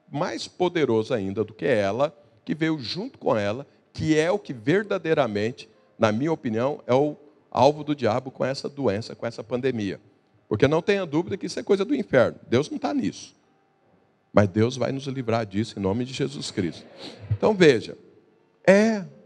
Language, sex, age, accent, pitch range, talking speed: Portuguese, male, 50-69, Brazilian, 105-150 Hz, 180 wpm